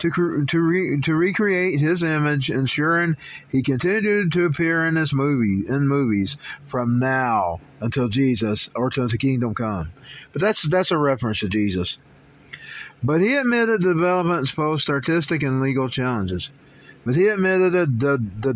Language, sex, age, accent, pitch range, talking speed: English, male, 50-69, American, 130-175 Hz, 150 wpm